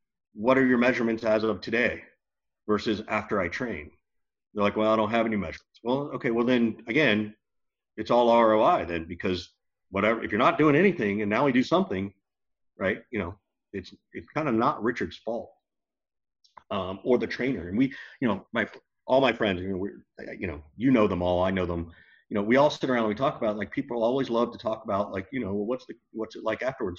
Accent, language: American, English